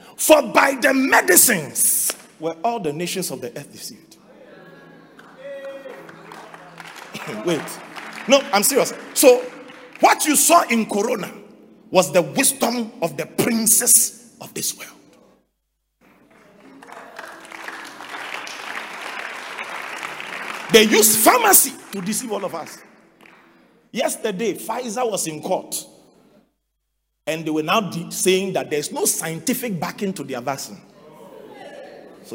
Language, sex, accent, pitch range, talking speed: English, male, Nigerian, 160-255 Hz, 115 wpm